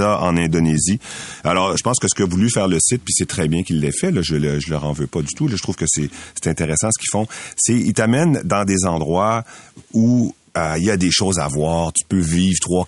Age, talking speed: 40-59, 270 wpm